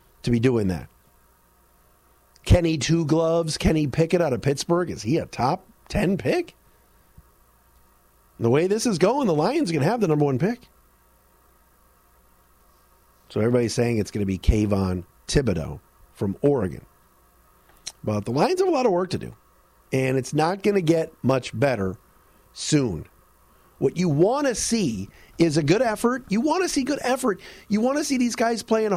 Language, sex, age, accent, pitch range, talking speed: English, male, 40-59, American, 135-220 Hz, 175 wpm